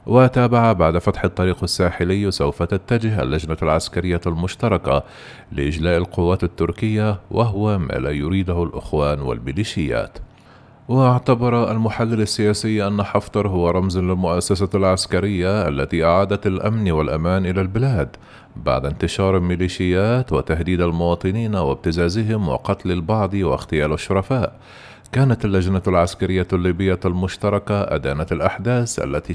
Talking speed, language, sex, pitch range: 105 wpm, Arabic, male, 85-110 Hz